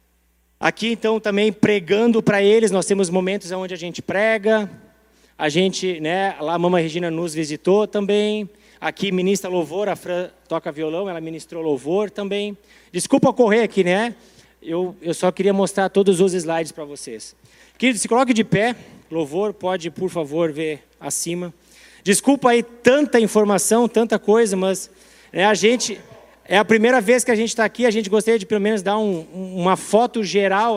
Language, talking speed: Portuguese, 175 wpm